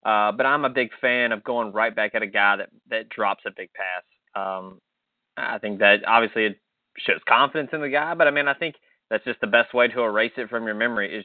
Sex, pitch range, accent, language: male, 105-125 Hz, American, English